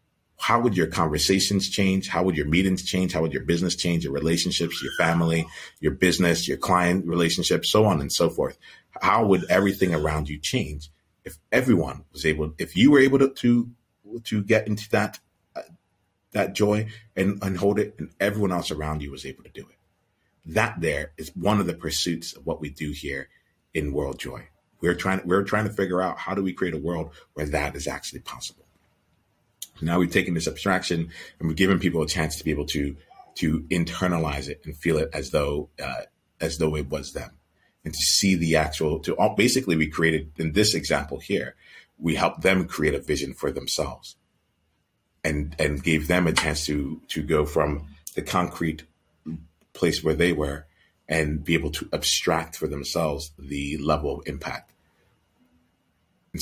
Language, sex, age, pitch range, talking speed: English, male, 30-49, 75-95 Hz, 190 wpm